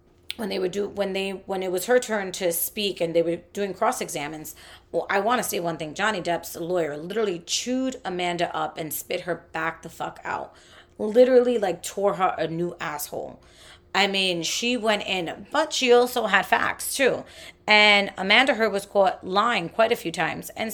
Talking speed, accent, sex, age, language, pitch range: 200 wpm, American, female, 30-49, English, 170-215 Hz